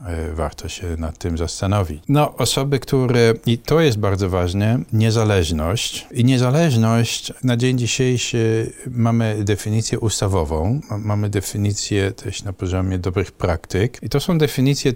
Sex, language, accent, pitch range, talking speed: male, Polish, native, 95-115 Hz, 135 wpm